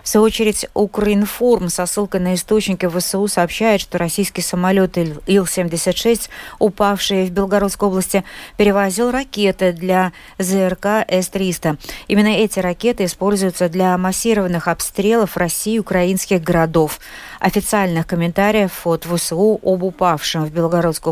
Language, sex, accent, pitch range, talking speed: Russian, female, native, 175-205 Hz, 120 wpm